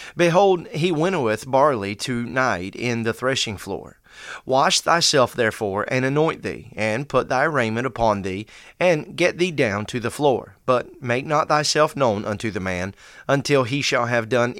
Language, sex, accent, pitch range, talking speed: English, male, American, 115-150 Hz, 175 wpm